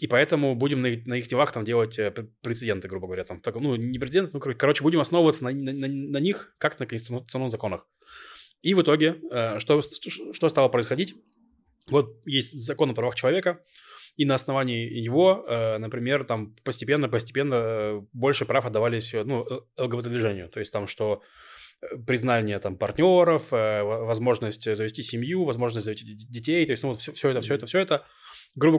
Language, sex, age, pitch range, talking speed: Russian, male, 20-39, 115-145 Hz, 175 wpm